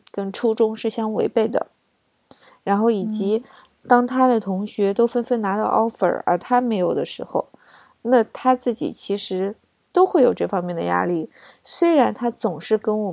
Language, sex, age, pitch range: Chinese, female, 20-39, 190-245 Hz